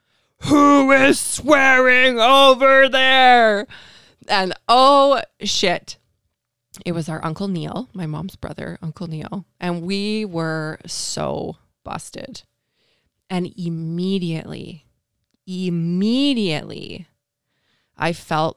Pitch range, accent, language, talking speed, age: 155-195 Hz, American, English, 90 wpm, 20-39